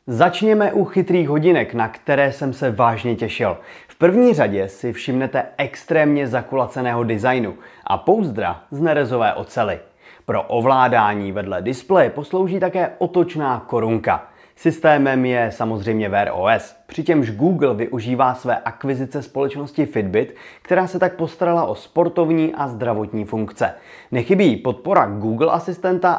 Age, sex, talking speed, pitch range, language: 30-49, male, 130 wpm, 120-160 Hz, Czech